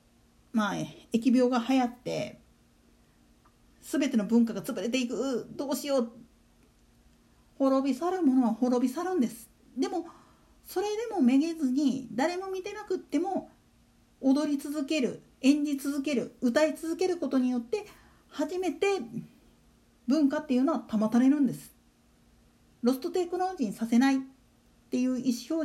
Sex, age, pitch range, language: female, 50-69, 245-330 Hz, Japanese